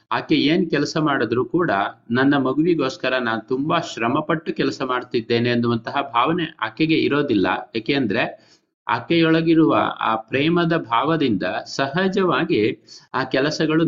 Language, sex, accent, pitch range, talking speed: Kannada, male, native, 120-160 Hz, 110 wpm